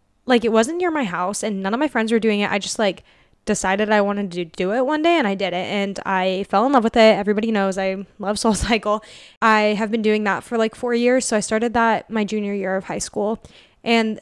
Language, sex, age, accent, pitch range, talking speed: English, female, 10-29, American, 200-235 Hz, 260 wpm